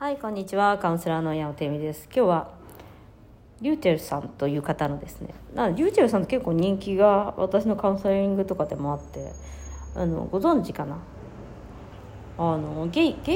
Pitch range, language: 145-210 Hz, Japanese